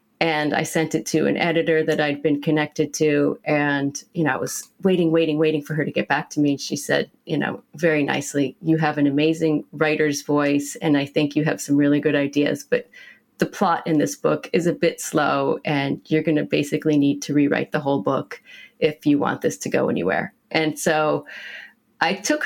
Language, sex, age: English, female, 30-49